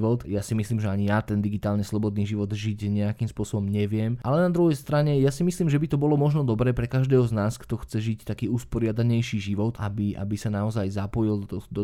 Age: 20-39